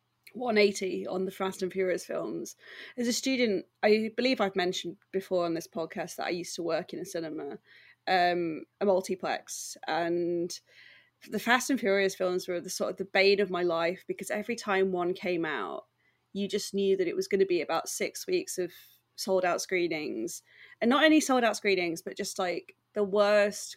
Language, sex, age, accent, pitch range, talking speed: English, female, 20-39, British, 180-220 Hz, 190 wpm